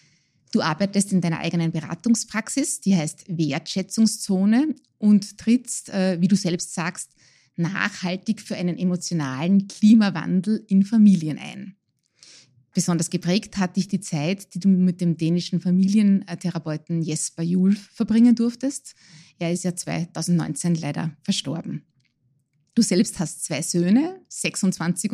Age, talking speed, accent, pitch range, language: 20-39, 120 wpm, Austrian, 170-220 Hz, German